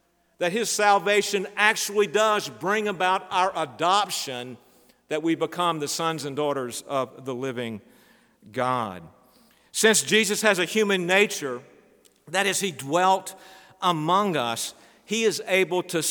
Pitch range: 135-185 Hz